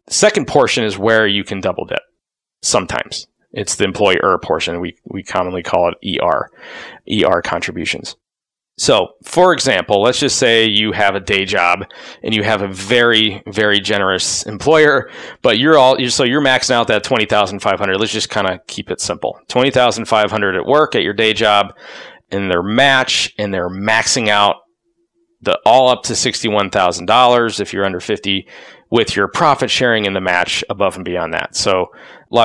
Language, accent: English, American